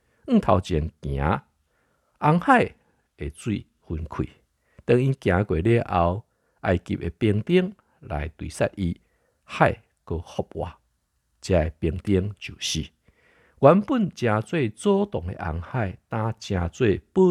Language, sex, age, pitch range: Chinese, male, 50-69, 80-120 Hz